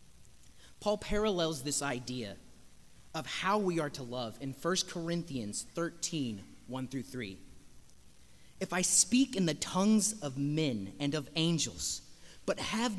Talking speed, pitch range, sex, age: 130 wpm, 135-210 Hz, male, 30-49